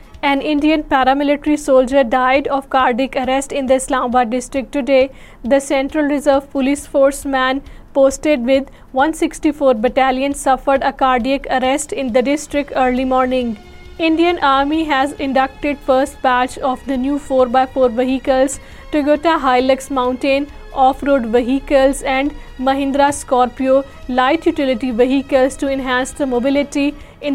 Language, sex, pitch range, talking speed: Urdu, female, 260-280 Hz, 135 wpm